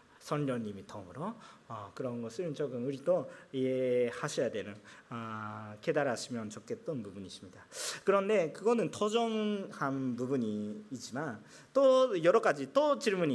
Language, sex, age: Korean, male, 40-59